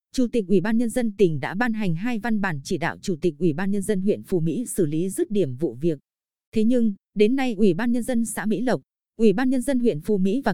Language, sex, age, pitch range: Vietnamese, female, 20-39, 185-230 Hz